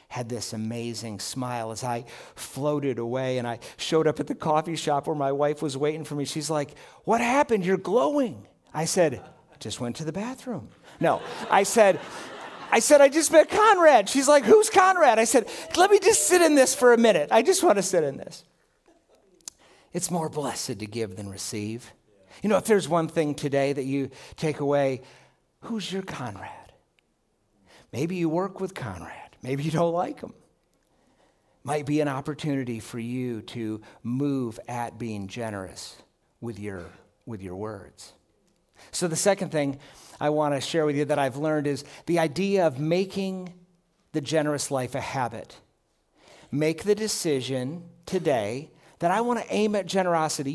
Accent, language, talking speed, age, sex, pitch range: American, English, 175 wpm, 50-69, male, 130-195 Hz